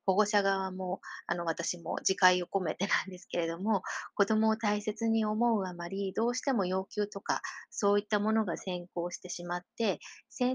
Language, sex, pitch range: Japanese, female, 180-230 Hz